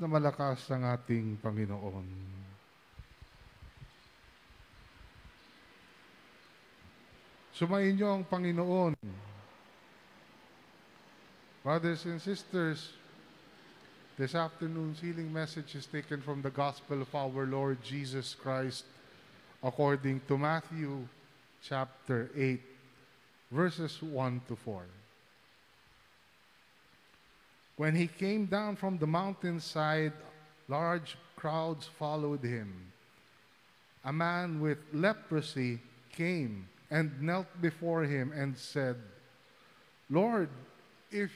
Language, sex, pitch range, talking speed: Filipino, male, 130-170 Hz, 85 wpm